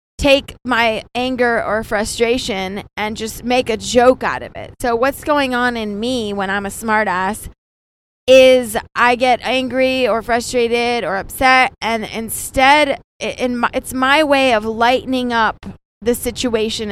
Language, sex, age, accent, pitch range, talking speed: English, female, 20-39, American, 215-250 Hz, 150 wpm